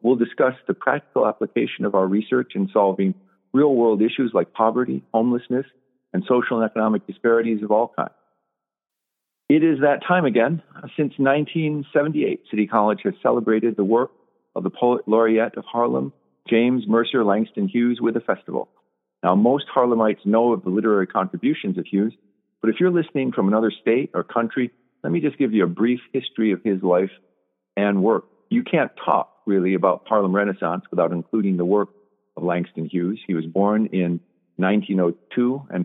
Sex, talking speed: male, 170 wpm